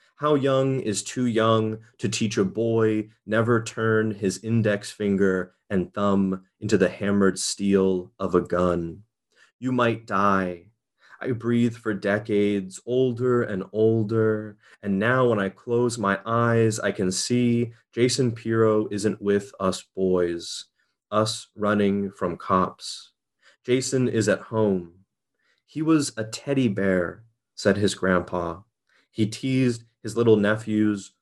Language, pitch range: English, 95-120 Hz